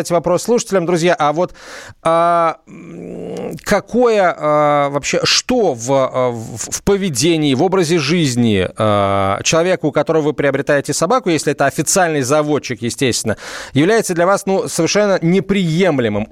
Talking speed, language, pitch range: 120 wpm, Russian, 135-175 Hz